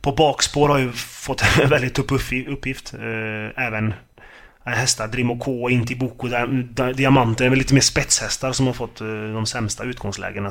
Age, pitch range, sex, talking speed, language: 20-39, 115-135 Hz, male, 145 wpm, Swedish